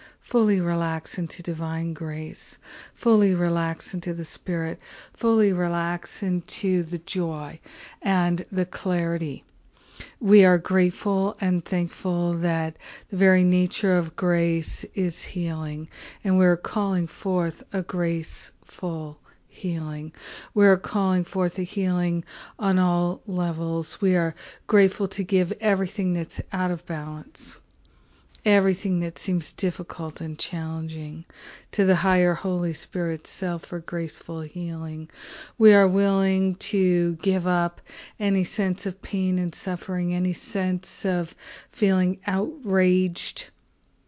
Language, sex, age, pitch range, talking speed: English, female, 50-69, 170-190 Hz, 120 wpm